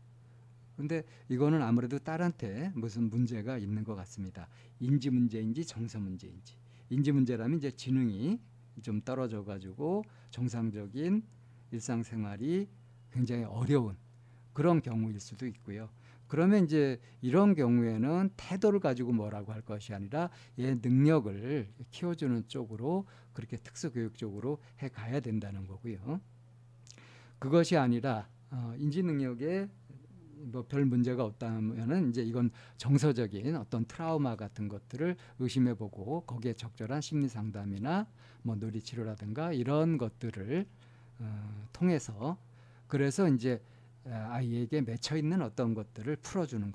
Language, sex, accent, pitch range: Korean, male, native, 115-145 Hz